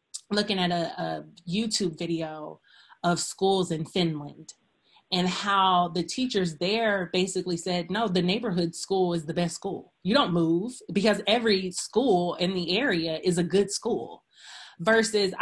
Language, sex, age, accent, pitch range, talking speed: English, female, 30-49, American, 175-210 Hz, 150 wpm